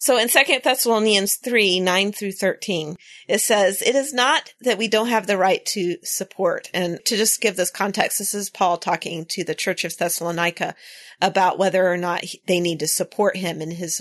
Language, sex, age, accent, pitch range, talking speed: English, female, 30-49, American, 180-230 Hz, 200 wpm